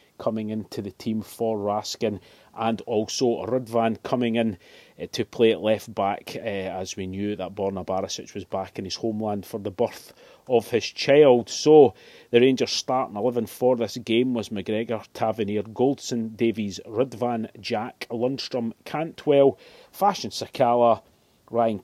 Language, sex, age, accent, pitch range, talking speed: English, male, 40-59, British, 110-125 Hz, 145 wpm